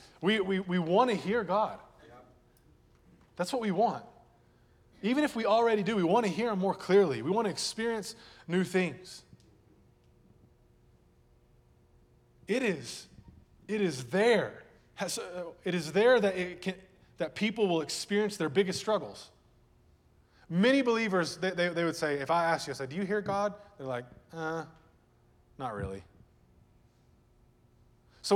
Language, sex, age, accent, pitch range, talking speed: English, male, 20-39, American, 135-195 Hz, 150 wpm